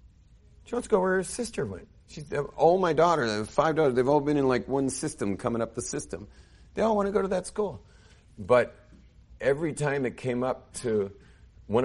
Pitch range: 85-135 Hz